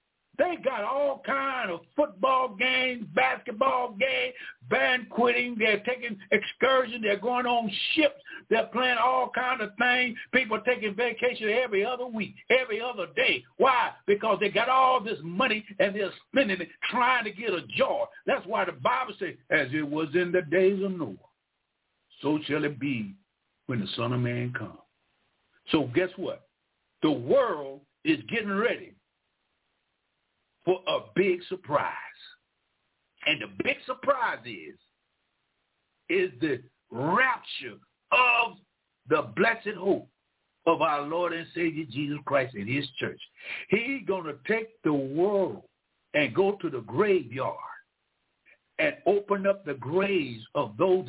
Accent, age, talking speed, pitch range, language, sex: American, 60-79, 145 wpm, 175-255 Hz, English, male